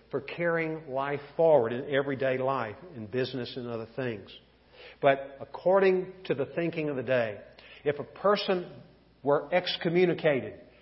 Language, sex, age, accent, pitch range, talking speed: English, male, 50-69, American, 125-160 Hz, 140 wpm